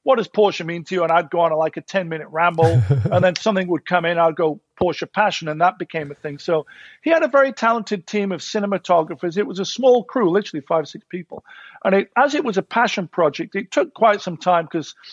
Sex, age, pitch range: male, 50-69, 160-205 Hz